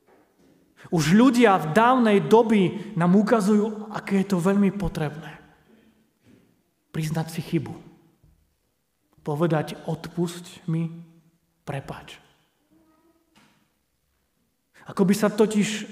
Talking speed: 85 wpm